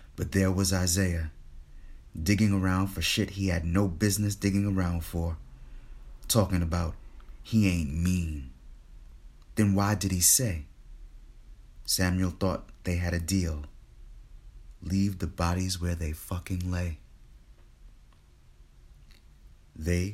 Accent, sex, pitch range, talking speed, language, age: American, male, 85-100 Hz, 115 wpm, English, 30-49